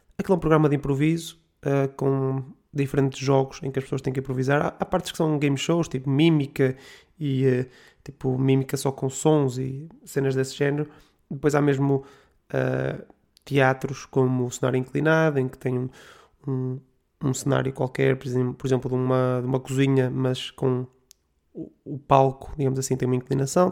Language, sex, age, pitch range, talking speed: Portuguese, male, 20-39, 130-155 Hz, 170 wpm